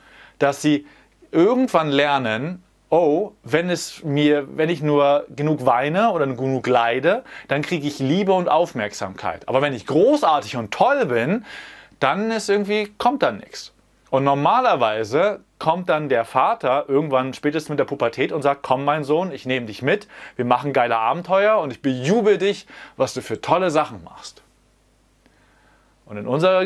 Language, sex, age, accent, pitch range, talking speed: German, male, 30-49, German, 125-170 Hz, 165 wpm